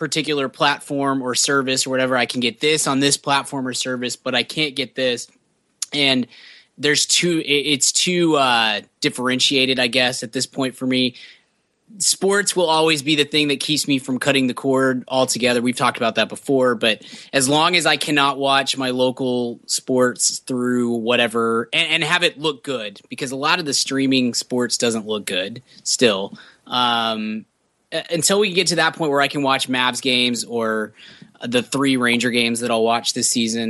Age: 20-39